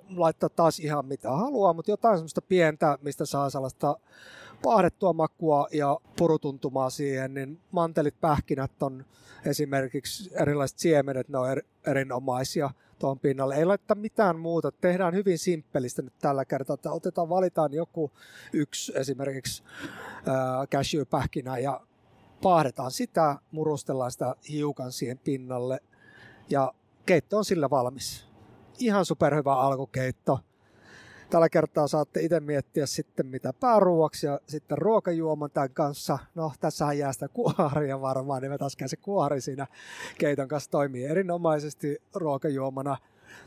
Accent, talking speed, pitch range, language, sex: native, 125 wpm, 135-170 Hz, Finnish, male